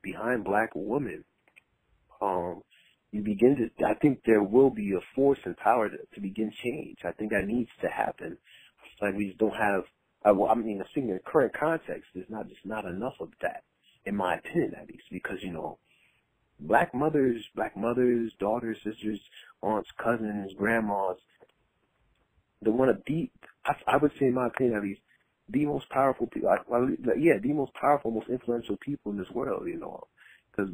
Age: 30-49